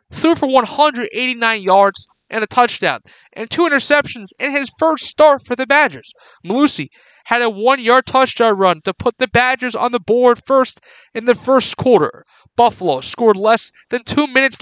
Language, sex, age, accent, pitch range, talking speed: English, male, 30-49, American, 225-275 Hz, 170 wpm